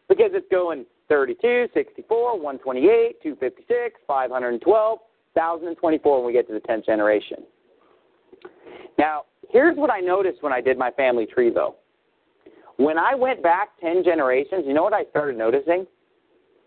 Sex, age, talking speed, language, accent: male, 40-59, 145 wpm, English, American